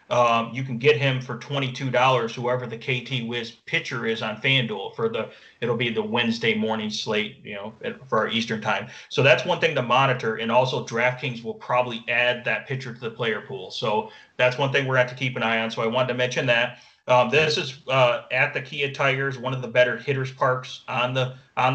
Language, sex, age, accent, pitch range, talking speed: English, male, 30-49, American, 120-135 Hz, 235 wpm